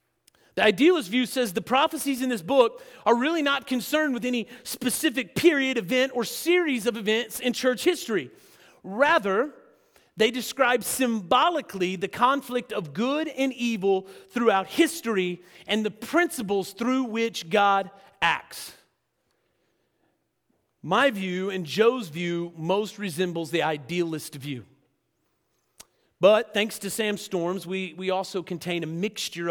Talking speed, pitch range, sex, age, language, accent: 130 wpm, 175-245 Hz, male, 40-59, English, American